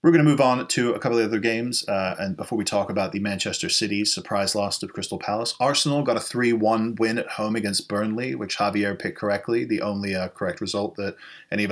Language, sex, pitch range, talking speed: English, male, 105-115 Hz, 240 wpm